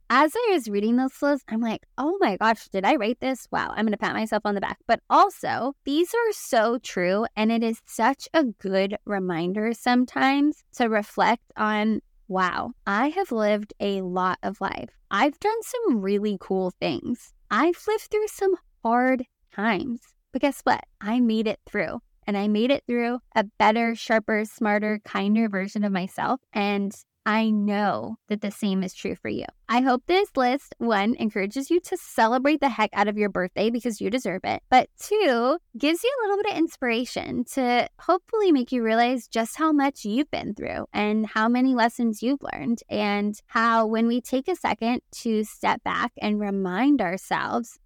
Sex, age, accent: female, 10-29, American